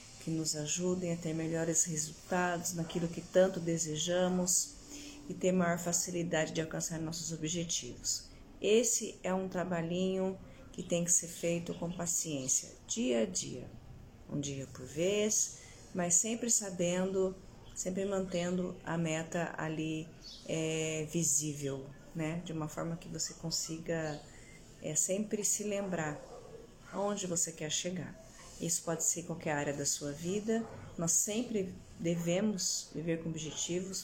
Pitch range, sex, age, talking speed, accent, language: 155-180 Hz, female, 30-49, 130 wpm, Brazilian, Portuguese